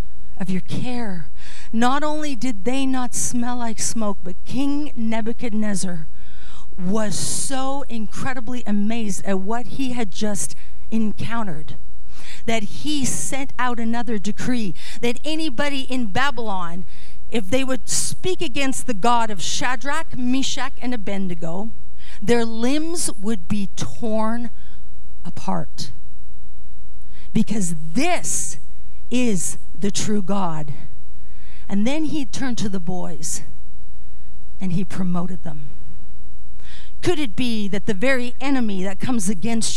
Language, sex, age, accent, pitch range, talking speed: English, female, 40-59, American, 170-255 Hz, 120 wpm